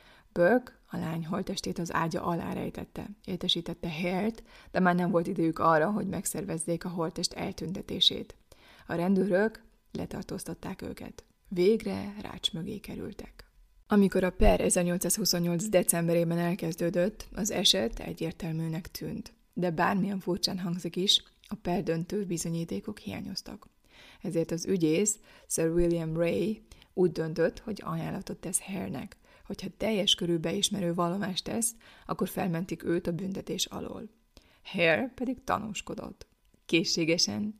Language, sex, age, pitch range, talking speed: Hungarian, female, 30-49, 170-205 Hz, 125 wpm